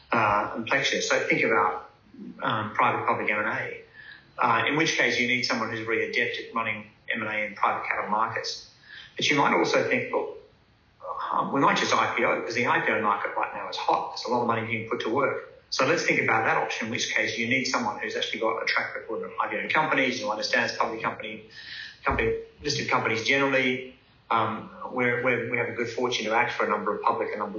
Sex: male